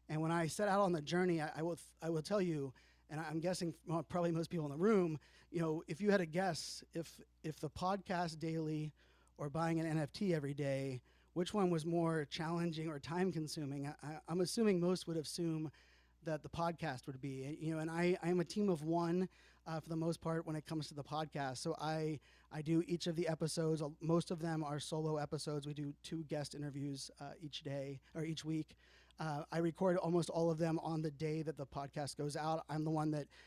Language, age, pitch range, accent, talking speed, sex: English, 30-49, 150-165 Hz, American, 225 wpm, male